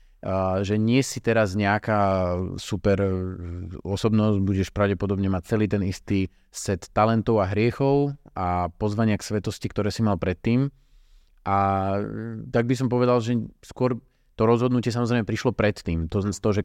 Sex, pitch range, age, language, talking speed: male, 90-105 Hz, 30-49, Slovak, 150 wpm